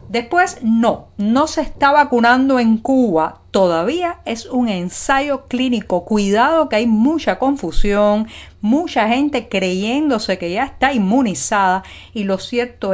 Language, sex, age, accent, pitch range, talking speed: Spanish, female, 50-69, American, 185-260 Hz, 130 wpm